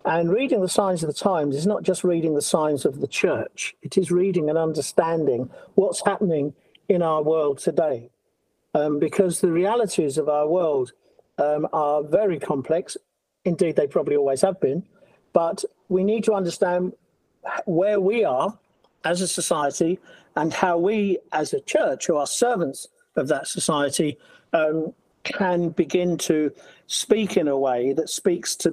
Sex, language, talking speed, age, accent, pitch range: male, English, 165 wpm, 50-69, British, 160-215 Hz